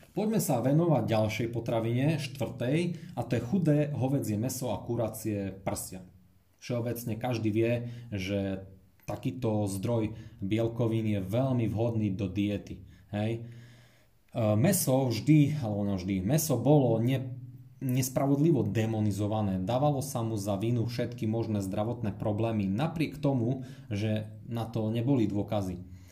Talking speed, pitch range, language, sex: 125 wpm, 105-130 Hz, Slovak, male